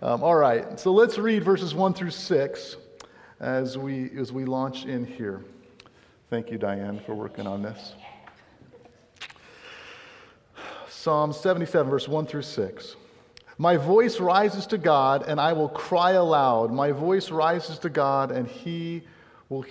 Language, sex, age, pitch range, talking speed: English, male, 40-59, 125-165 Hz, 145 wpm